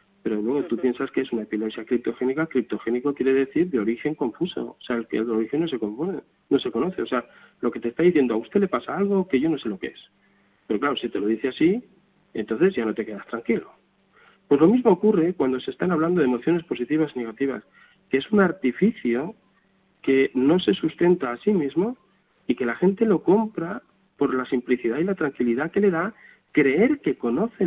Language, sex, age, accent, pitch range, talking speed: Spanish, male, 40-59, Spanish, 125-185 Hz, 215 wpm